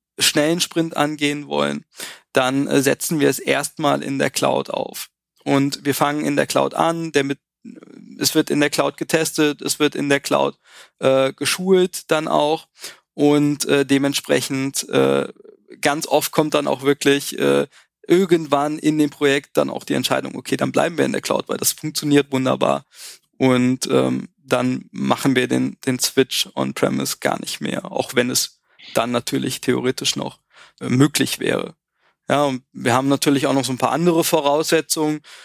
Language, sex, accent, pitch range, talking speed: German, male, German, 125-150 Hz, 170 wpm